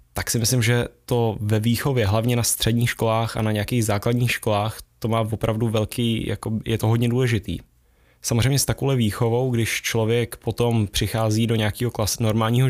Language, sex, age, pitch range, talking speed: Czech, male, 20-39, 110-120 Hz, 175 wpm